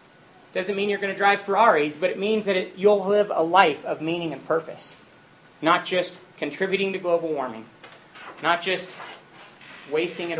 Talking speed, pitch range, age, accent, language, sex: 175 wpm, 180-225 Hz, 40-59, American, English, male